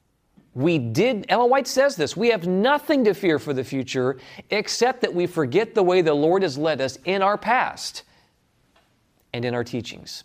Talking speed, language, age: 185 wpm, English, 40-59